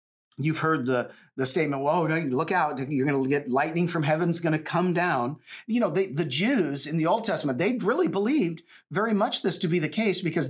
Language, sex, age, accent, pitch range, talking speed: English, male, 40-59, American, 140-200 Hz, 225 wpm